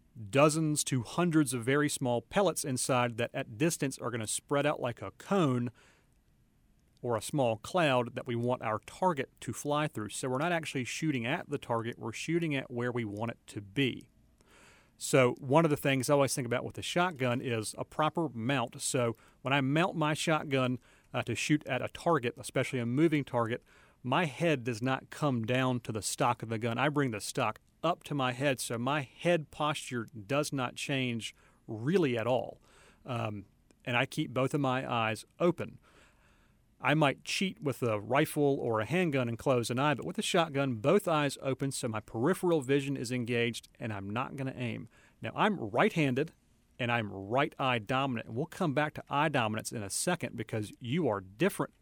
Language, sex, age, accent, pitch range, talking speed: English, male, 40-59, American, 120-150 Hz, 200 wpm